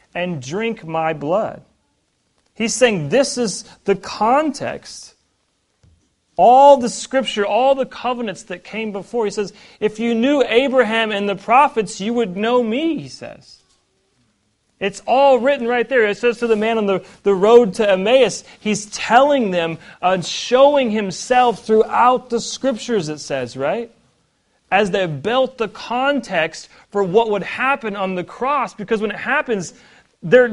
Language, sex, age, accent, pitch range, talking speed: English, male, 40-59, American, 185-245 Hz, 155 wpm